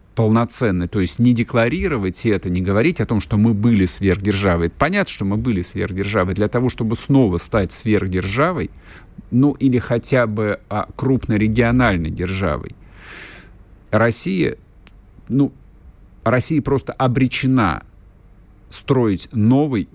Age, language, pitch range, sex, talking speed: 50-69, Russian, 95-115 Hz, male, 110 wpm